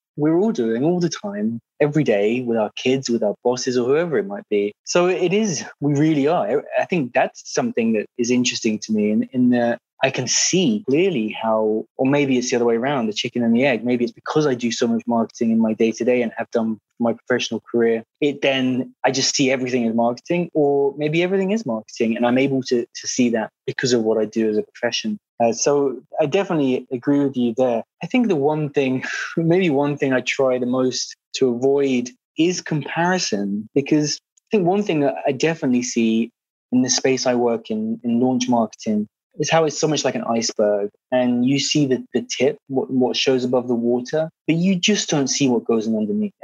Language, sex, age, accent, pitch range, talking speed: English, male, 20-39, British, 120-150 Hz, 220 wpm